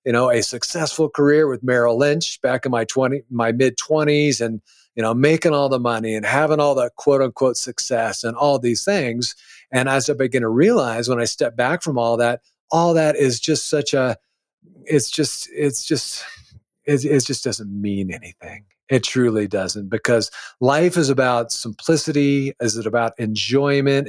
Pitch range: 120-145 Hz